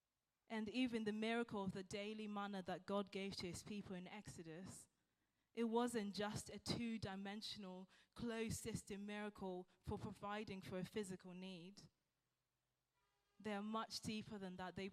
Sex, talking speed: female, 155 wpm